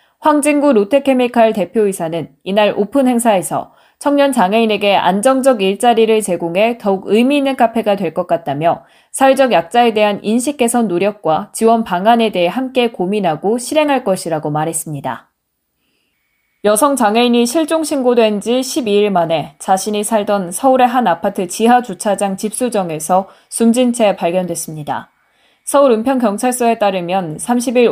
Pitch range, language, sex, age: 190-245 Hz, Korean, female, 20-39